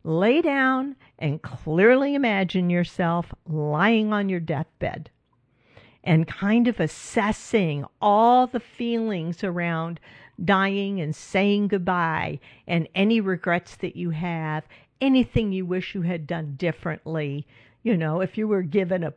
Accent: American